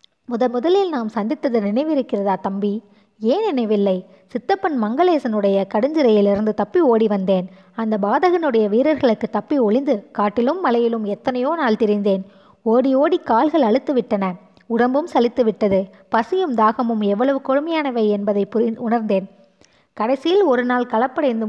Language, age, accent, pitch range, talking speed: Tamil, 20-39, native, 205-260 Hz, 110 wpm